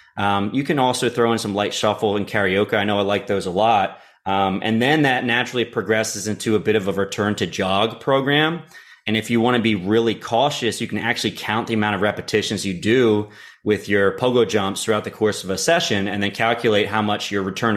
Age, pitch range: 30-49, 100-115 Hz